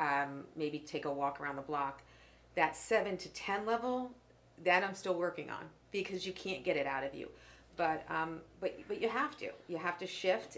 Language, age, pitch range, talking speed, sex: English, 40-59, 155-195 Hz, 210 wpm, female